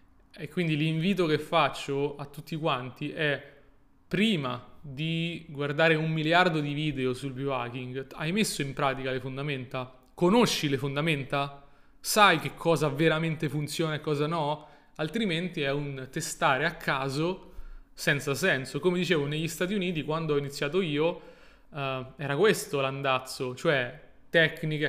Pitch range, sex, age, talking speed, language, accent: 135-165 Hz, male, 20-39, 140 wpm, Italian, native